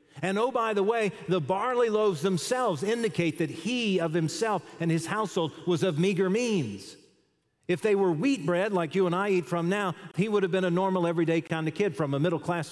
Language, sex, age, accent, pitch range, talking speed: English, male, 50-69, American, 125-170 Hz, 215 wpm